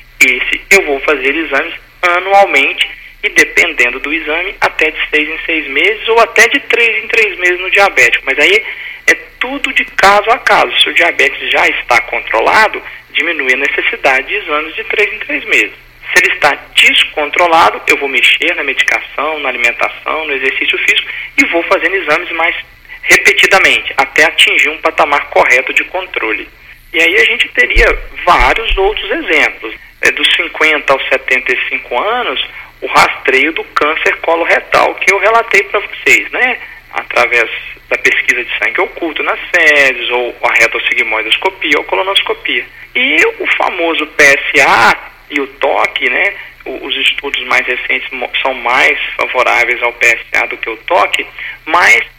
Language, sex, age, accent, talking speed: Portuguese, male, 40-59, Brazilian, 155 wpm